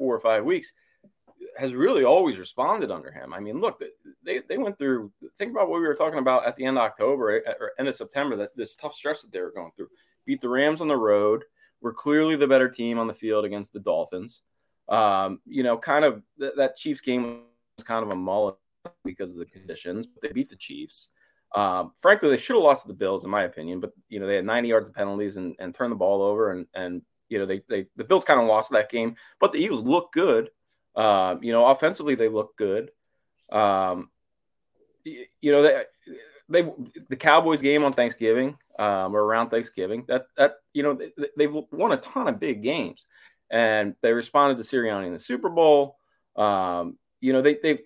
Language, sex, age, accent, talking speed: English, male, 20-39, American, 220 wpm